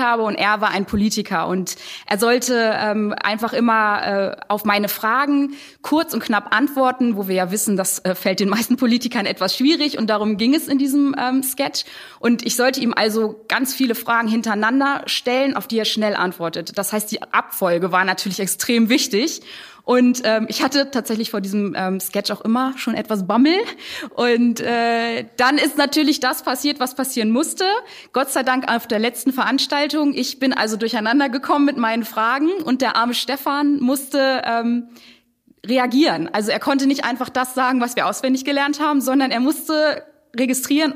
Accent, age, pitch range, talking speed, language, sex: German, 20-39, 210-270 Hz, 185 wpm, German, female